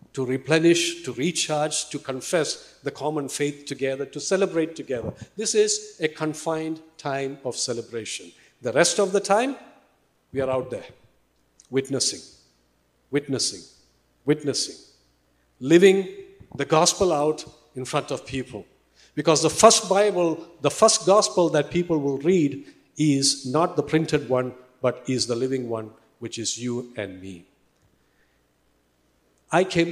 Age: 50-69